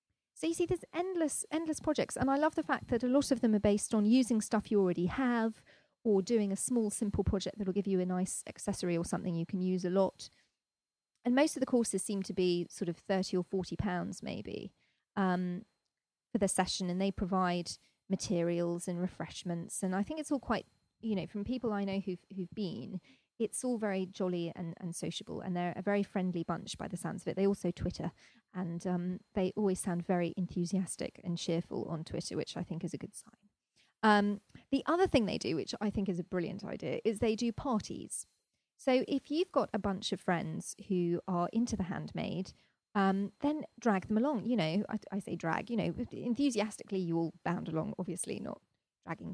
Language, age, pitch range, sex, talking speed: English, 30-49, 180-230 Hz, female, 215 wpm